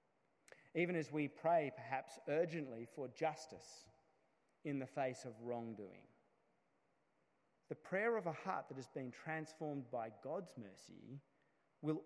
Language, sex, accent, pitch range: English, male, Australian, 130-175 Hz